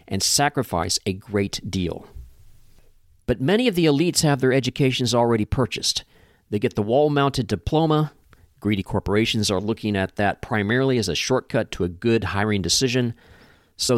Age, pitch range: 40-59, 100-130 Hz